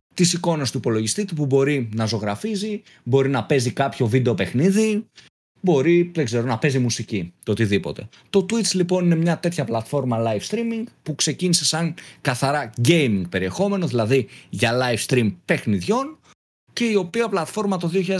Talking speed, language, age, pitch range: 150 wpm, Greek, 30-49, 115-170 Hz